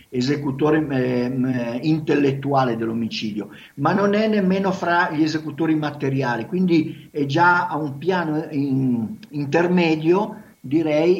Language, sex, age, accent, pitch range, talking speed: Italian, male, 50-69, native, 130-170 Hz, 100 wpm